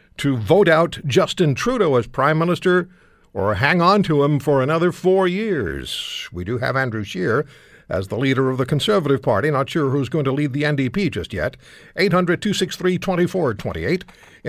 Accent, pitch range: American, 130-180 Hz